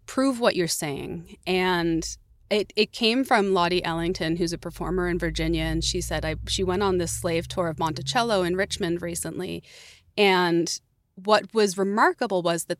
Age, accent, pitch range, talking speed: 30-49, American, 170-200 Hz, 175 wpm